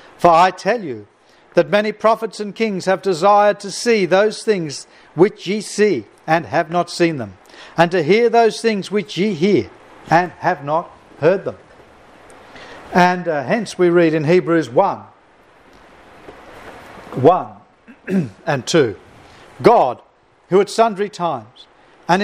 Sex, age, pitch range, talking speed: male, 60-79, 160-205 Hz, 145 wpm